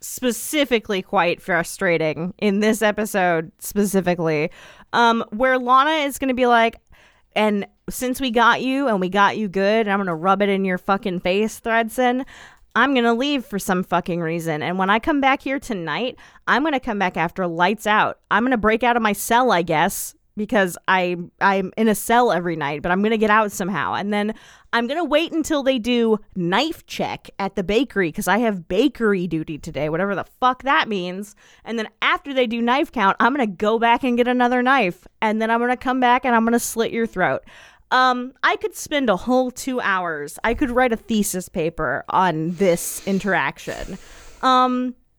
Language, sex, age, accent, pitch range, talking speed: English, female, 20-39, American, 190-250 Hz, 210 wpm